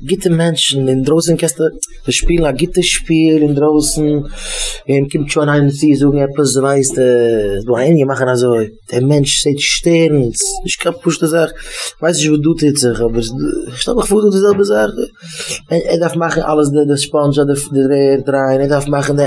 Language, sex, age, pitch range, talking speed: English, male, 20-39, 130-160 Hz, 145 wpm